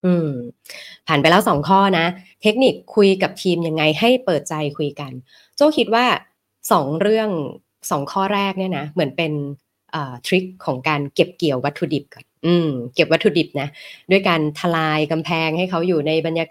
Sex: female